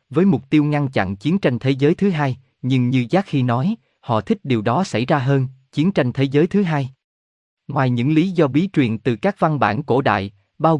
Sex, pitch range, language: male, 115-155 Hz, Vietnamese